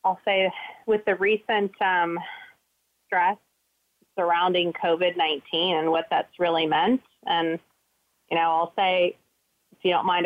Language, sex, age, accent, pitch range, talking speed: English, female, 30-49, American, 175-210 Hz, 135 wpm